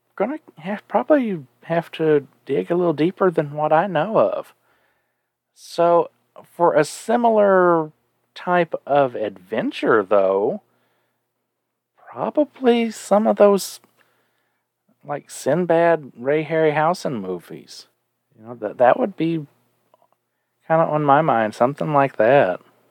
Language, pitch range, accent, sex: English, 110-170 Hz, American, male